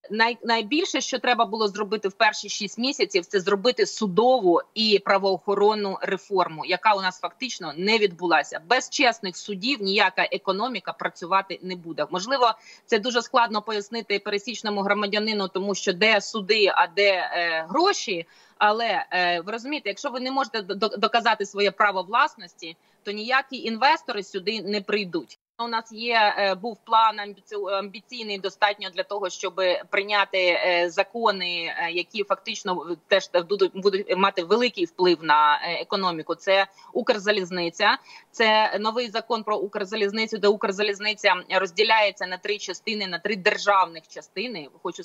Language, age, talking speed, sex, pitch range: Ukrainian, 30-49, 135 wpm, female, 185-225 Hz